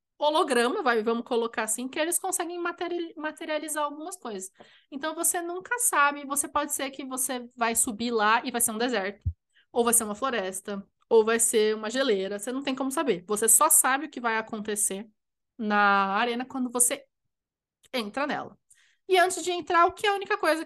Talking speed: 190 wpm